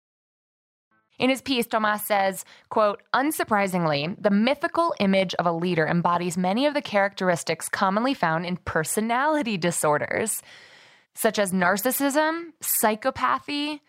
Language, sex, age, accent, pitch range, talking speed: English, female, 20-39, American, 180-265 Hz, 115 wpm